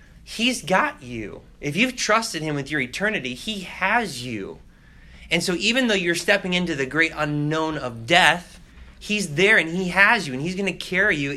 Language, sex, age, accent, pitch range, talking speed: English, male, 30-49, American, 120-180 Hz, 195 wpm